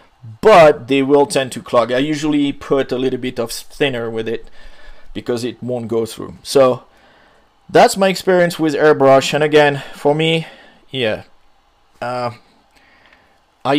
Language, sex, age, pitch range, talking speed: English, male, 30-49, 125-155 Hz, 150 wpm